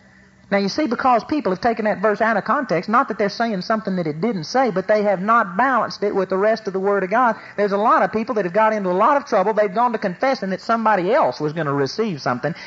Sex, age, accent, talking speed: male, 40-59, American, 285 wpm